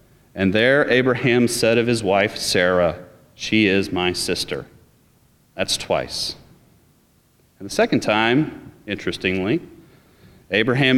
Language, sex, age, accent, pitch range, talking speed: English, male, 30-49, American, 110-150 Hz, 110 wpm